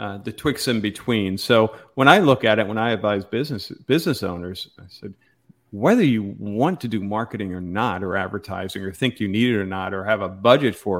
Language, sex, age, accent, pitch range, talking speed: English, male, 50-69, American, 105-125 Hz, 225 wpm